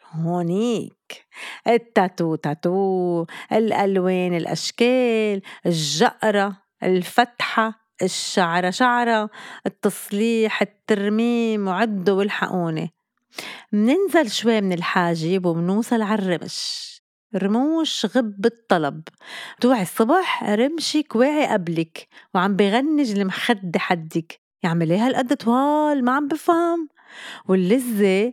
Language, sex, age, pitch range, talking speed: Arabic, female, 30-49, 185-245 Hz, 85 wpm